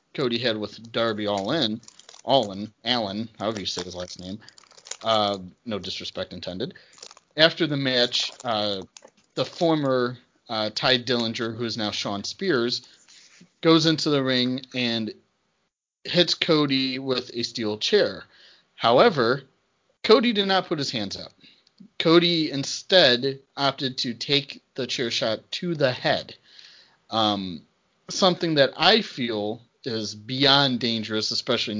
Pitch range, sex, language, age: 115-145 Hz, male, English, 30-49